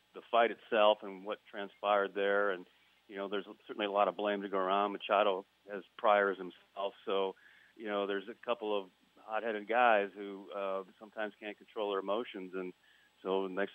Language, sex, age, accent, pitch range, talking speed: English, male, 40-59, American, 100-110 Hz, 190 wpm